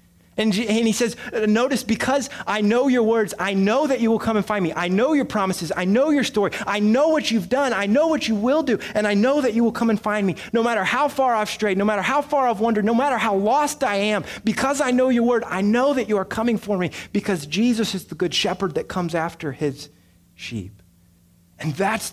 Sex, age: male, 30-49